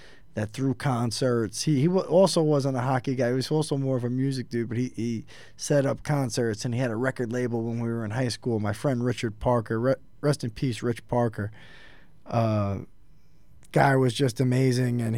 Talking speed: 200 wpm